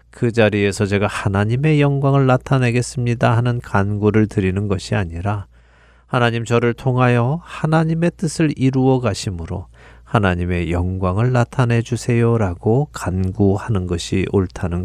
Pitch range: 95-130 Hz